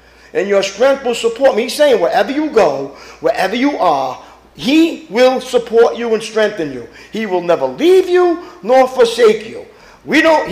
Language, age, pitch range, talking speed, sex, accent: English, 50-69, 185-285 Hz, 175 wpm, male, American